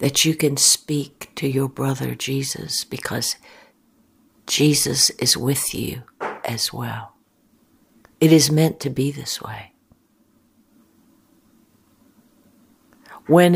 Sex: female